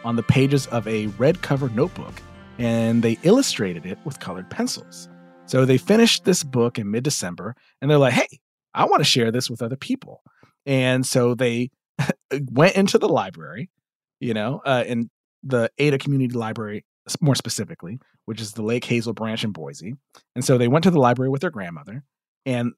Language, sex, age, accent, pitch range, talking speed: English, male, 40-59, American, 120-155 Hz, 185 wpm